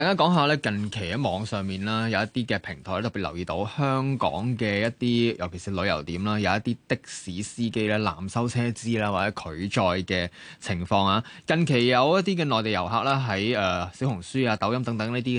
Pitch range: 100-125 Hz